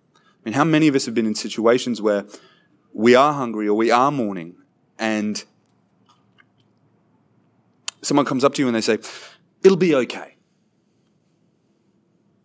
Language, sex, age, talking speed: English, male, 30-49, 140 wpm